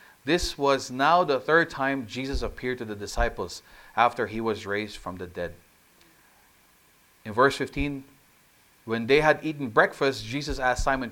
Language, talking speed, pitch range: English, 155 wpm, 100-140 Hz